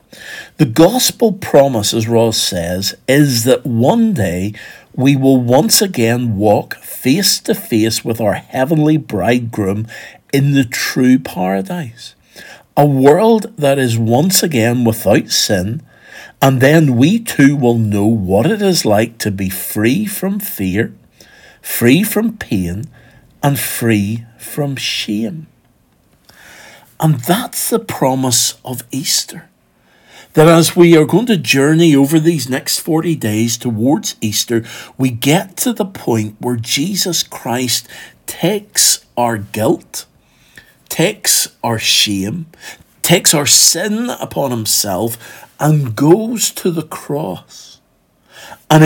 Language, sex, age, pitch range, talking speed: English, male, 50-69, 115-170 Hz, 125 wpm